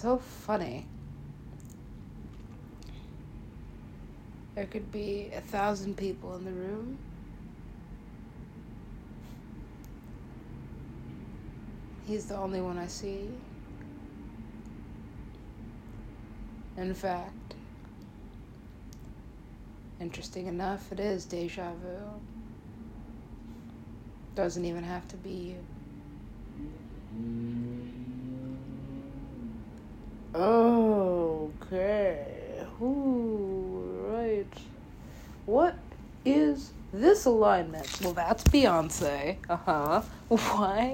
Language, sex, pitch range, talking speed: English, female, 135-225 Hz, 65 wpm